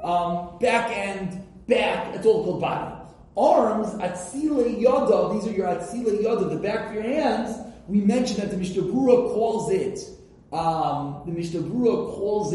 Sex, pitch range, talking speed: male, 175-230 Hz, 160 wpm